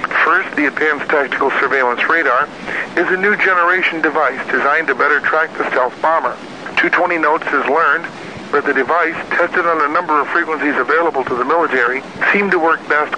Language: English